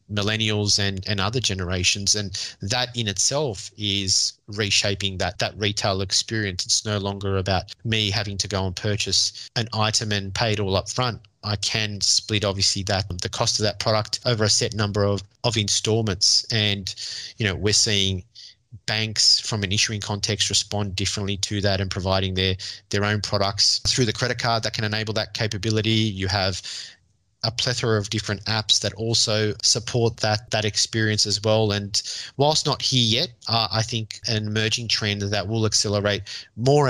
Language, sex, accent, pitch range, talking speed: English, male, Australian, 100-110 Hz, 175 wpm